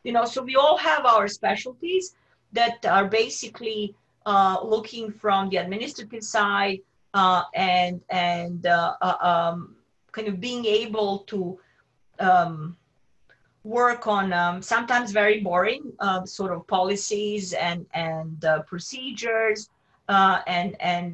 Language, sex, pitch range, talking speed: English, female, 180-220 Hz, 130 wpm